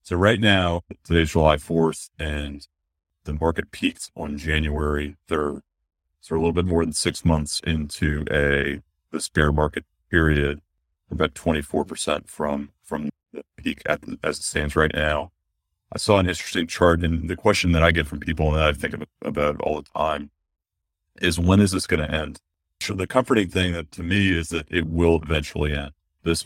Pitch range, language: 75-85 Hz, English